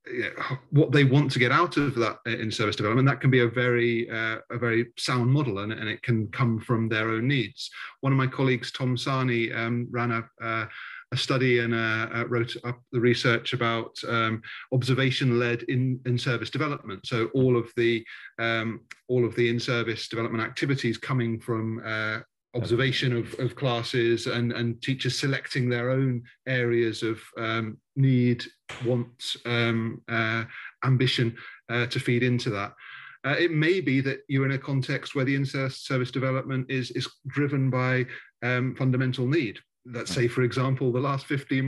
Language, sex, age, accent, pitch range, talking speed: English, male, 30-49, British, 115-135 Hz, 170 wpm